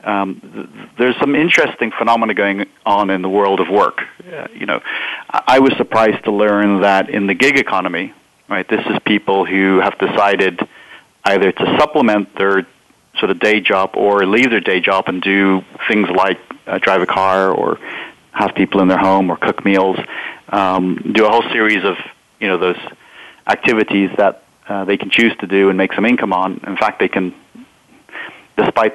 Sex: male